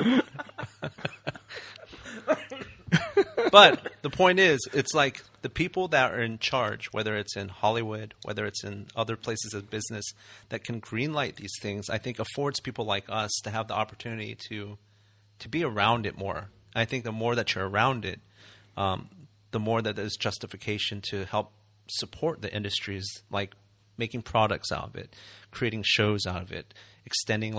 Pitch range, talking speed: 105-120 Hz, 165 wpm